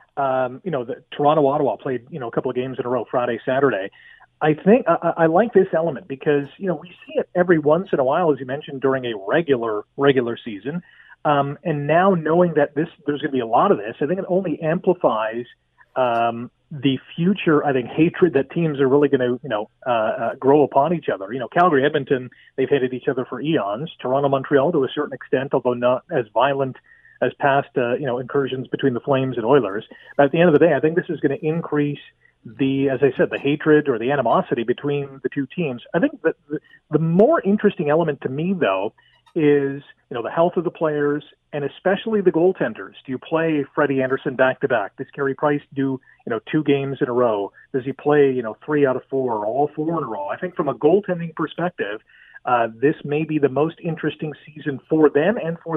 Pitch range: 135-165 Hz